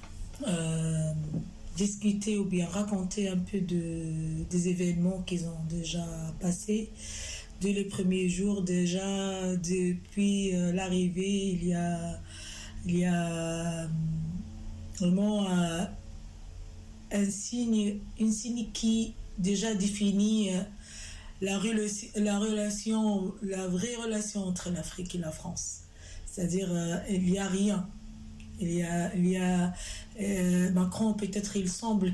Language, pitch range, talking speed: French, 165-195 Hz, 130 wpm